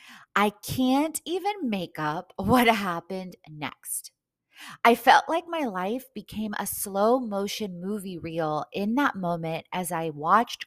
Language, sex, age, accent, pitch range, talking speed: English, female, 20-39, American, 190-320 Hz, 140 wpm